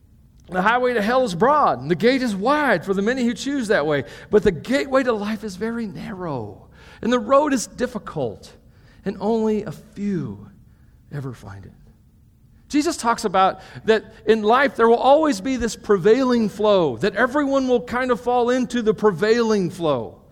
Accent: American